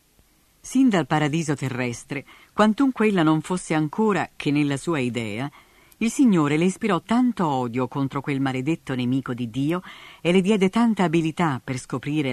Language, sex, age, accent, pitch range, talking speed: Italian, female, 50-69, native, 135-190 Hz, 155 wpm